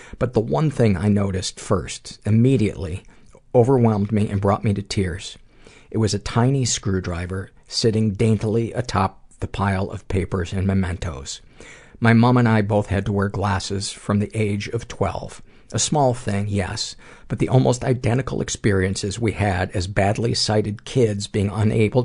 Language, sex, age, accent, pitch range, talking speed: English, male, 50-69, American, 95-115 Hz, 165 wpm